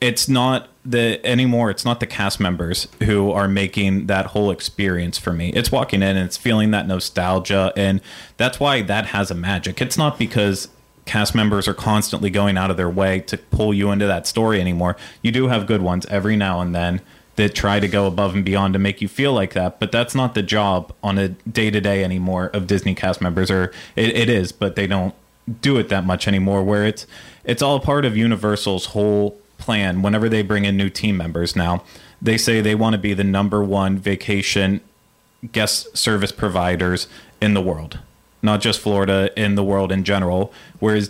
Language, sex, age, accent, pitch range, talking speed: English, male, 30-49, American, 95-110 Hz, 205 wpm